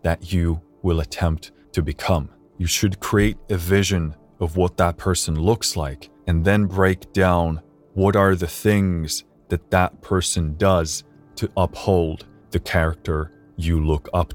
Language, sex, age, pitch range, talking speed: English, male, 20-39, 80-95 Hz, 150 wpm